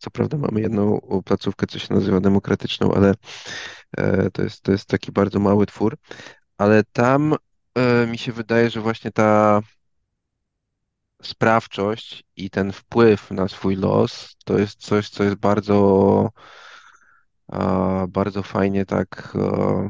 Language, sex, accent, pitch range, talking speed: Polish, male, native, 95-115 Hz, 125 wpm